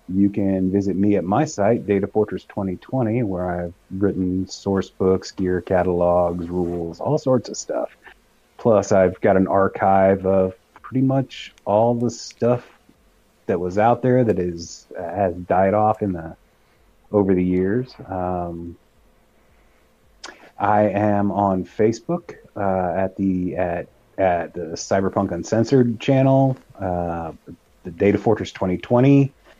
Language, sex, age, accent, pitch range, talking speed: English, male, 30-49, American, 95-115 Hz, 140 wpm